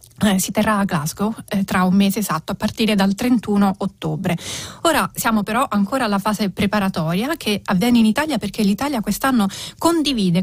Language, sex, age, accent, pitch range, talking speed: Italian, female, 30-49, native, 190-230 Hz, 165 wpm